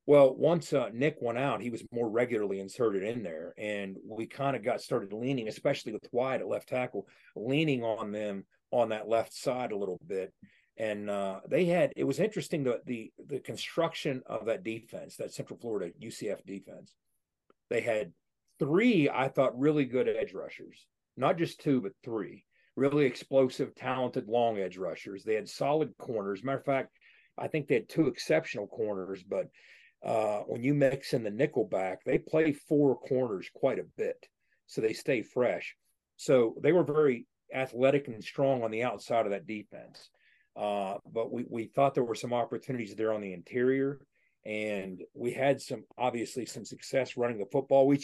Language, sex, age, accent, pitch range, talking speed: English, male, 40-59, American, 110-140 Hz, 180 wpm